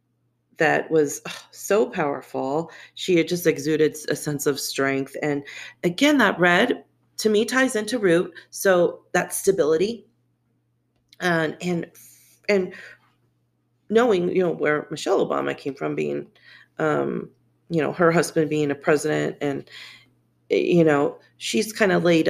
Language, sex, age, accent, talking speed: English, female, 40-59, American, 135 wpm